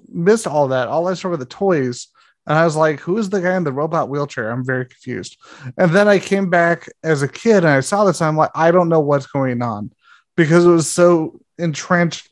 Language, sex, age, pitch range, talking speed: English, male, 30-49, 135-170 Hz, 240 wpm